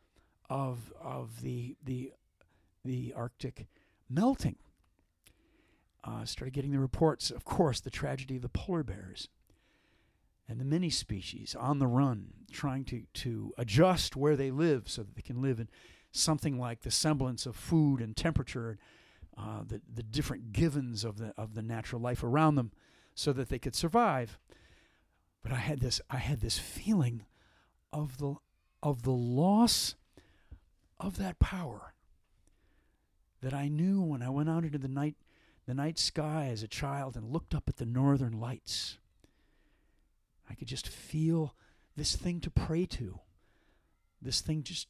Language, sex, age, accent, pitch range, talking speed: English, male, 50-69, American, 110-150 Hz, 155 wpm